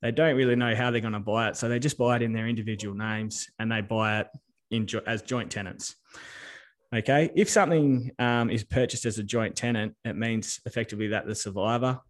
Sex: male